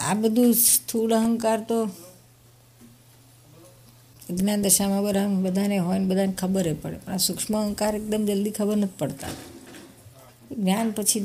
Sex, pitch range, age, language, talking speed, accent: female, 125-195 Hz, 50-69, Gujarati, 105 wpm, native